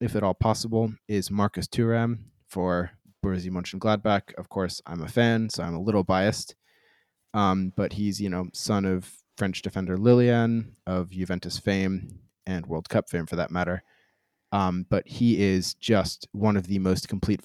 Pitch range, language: 95-110 Hz, English